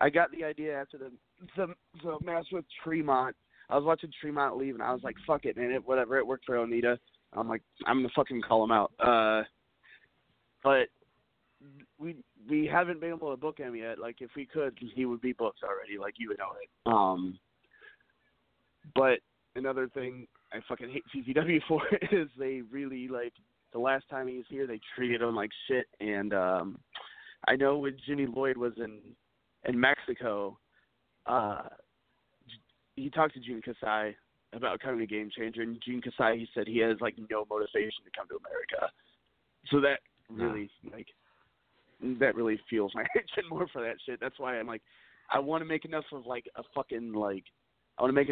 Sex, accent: male, American